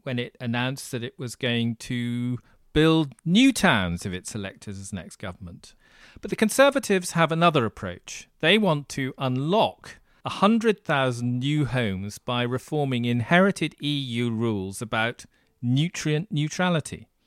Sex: male